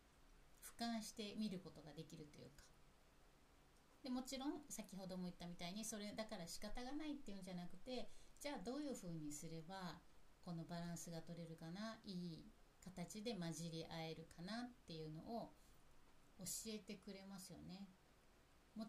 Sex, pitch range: female, 160-220 Hz